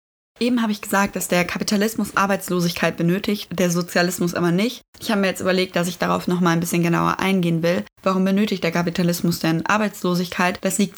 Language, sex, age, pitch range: German, female, 20-39, 170-195 Hz